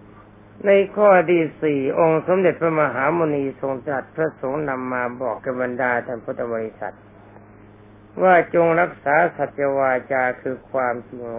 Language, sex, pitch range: Thai, male, 105-150 Hz